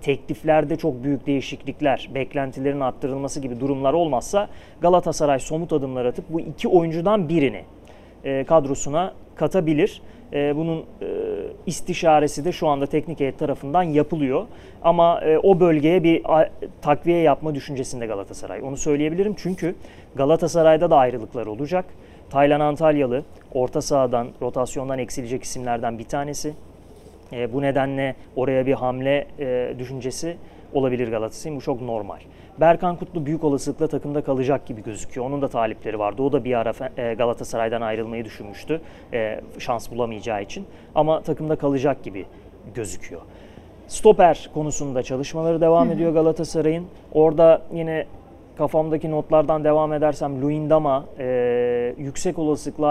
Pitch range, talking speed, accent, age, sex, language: 130-160 Hz, 120 wpm, native, 30-49, male, Turkish